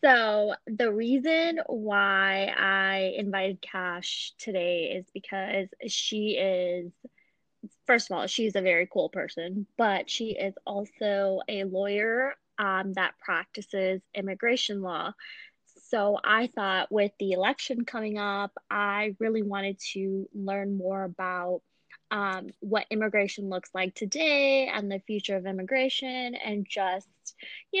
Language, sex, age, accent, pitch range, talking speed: English, female, 20-39, American, 195-240 Hz, 130 wpm